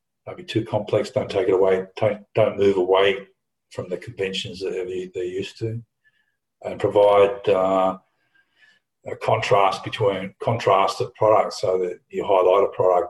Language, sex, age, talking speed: English, male, 50-69, 150 wpm